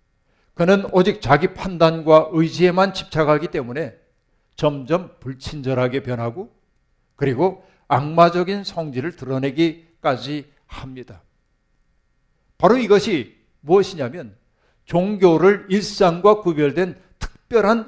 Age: 50-69